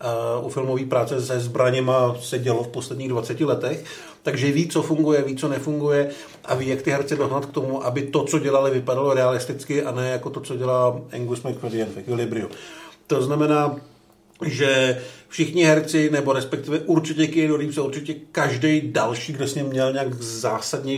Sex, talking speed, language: male, 175 wpm, Czech